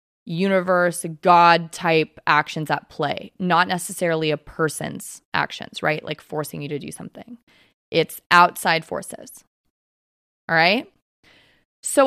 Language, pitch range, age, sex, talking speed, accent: English, 170-210 Hz, 20-39, female, 115 wpm, American